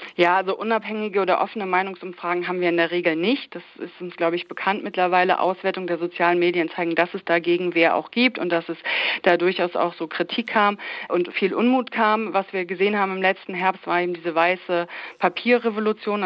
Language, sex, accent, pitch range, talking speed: German, female, German, 175-205 Hz, 205 wpm